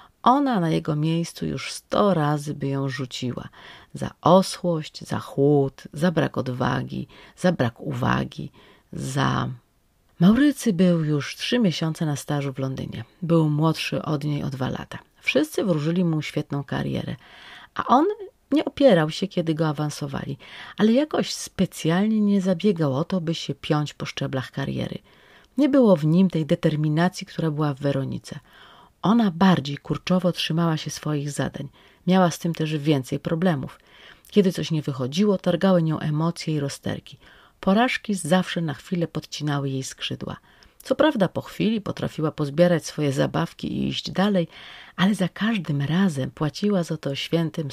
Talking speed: 150 wpm